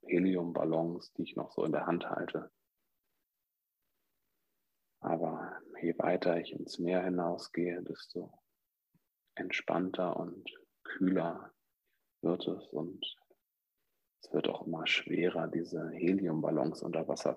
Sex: male